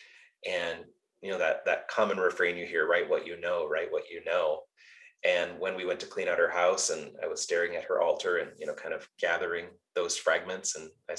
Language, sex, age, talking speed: English, male, 30-49, 230 wpm